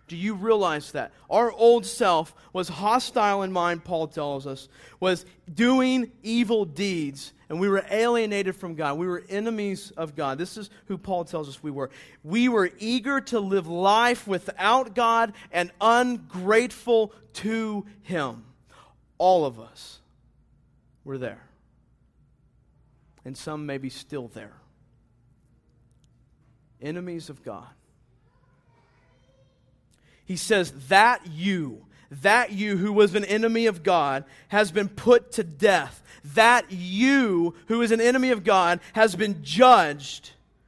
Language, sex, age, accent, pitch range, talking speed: English, male, 40-59, American, 135-210 Hz, 135 wpm